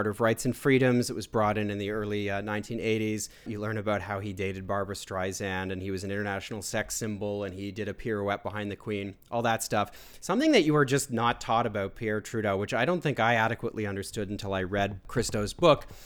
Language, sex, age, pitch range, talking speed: English, male, 30-49, 105-125 Hz, 225 wpm